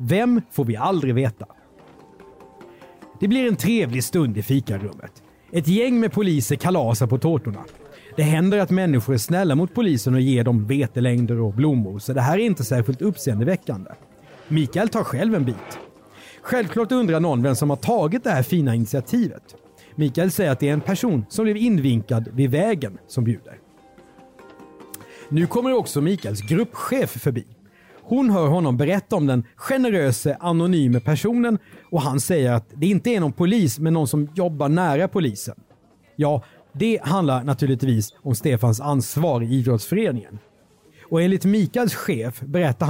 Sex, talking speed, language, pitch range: male, 160 wpm, Swedish, 125-180 Hz